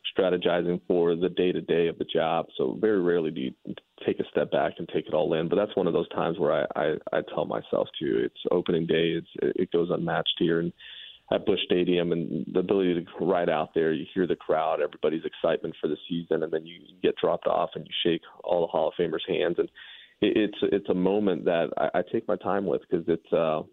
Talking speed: 230 wpm